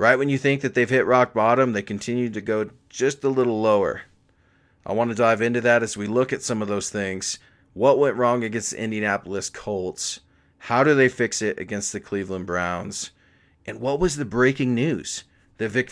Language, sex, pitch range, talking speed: English, male, 105-130 Hz, 205 wpm